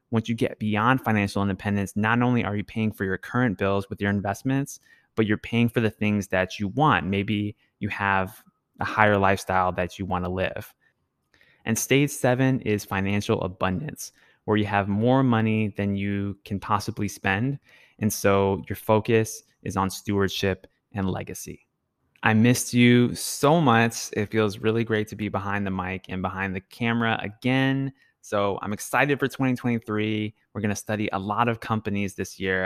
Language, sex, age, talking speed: English, male, 20-39, 180 wpm